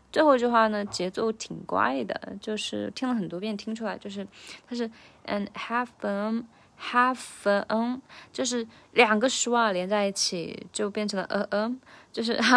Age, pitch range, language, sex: 20-39, 180-235 Hz, Chinese, female